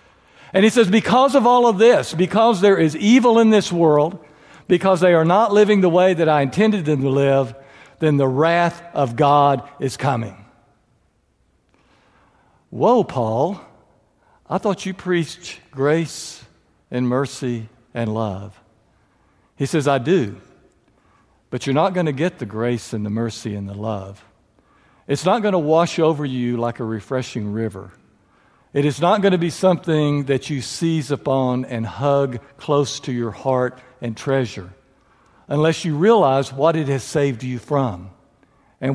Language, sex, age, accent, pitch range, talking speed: English, male, 60-79, American, 120-180 Hz, 160 wpm